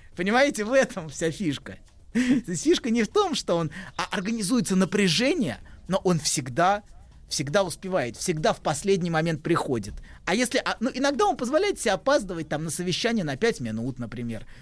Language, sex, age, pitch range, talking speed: Russian, male, 30-49, 150-225 Hz, 155 wpm